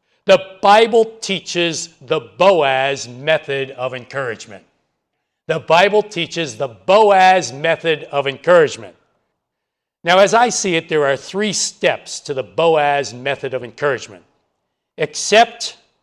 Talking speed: 120 wpm